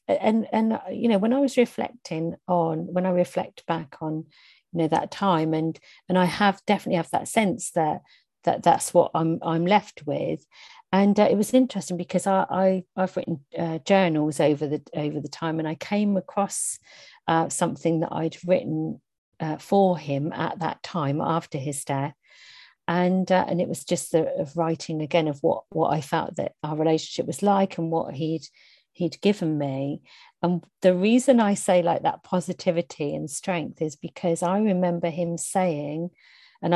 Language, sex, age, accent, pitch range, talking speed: English, female, 50-69, British, 160-190 Hz, 185 wpm